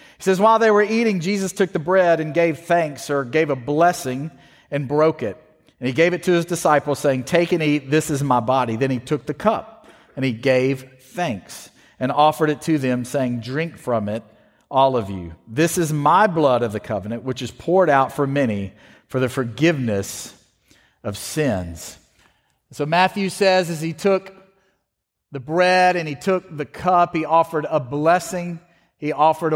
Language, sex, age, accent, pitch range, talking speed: English, male, 40-59, American, 140-175 Hz, 190 wpm